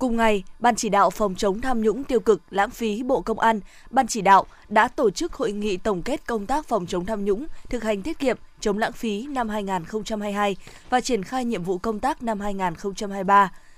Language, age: Vietnamese, 20-39